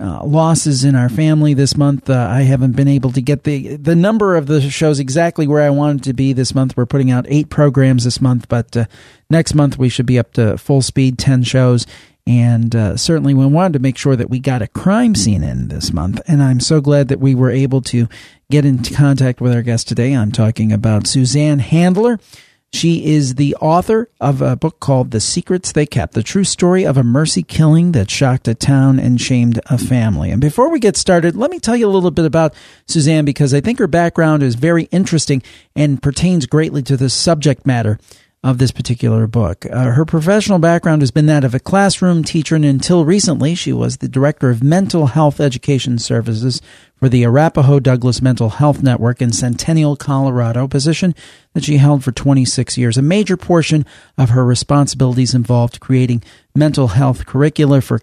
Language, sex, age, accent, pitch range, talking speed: English, male, 40-59, American, 125-160 Hz, 205 wpm